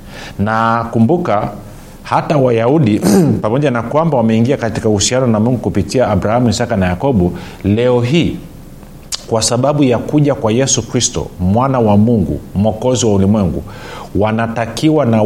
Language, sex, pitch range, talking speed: Swahili, male, 100-125 Hz, 135 wpm